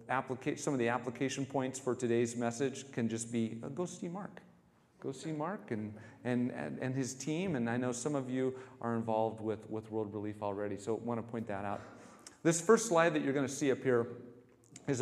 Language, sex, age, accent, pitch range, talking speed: English, male, 40-59, American, 115-140 Hz, 220 wpm